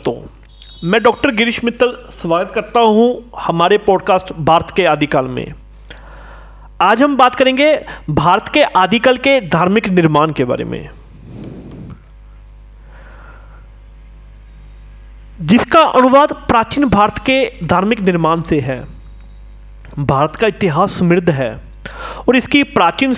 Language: Hindi